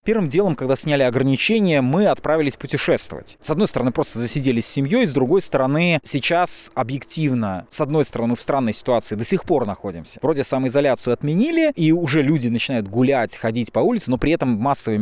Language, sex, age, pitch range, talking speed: Russian, male, 20-39, 115-150 Hz, 180 wpm